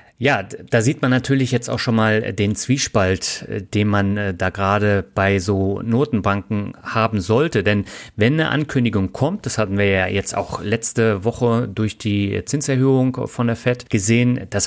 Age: 40-59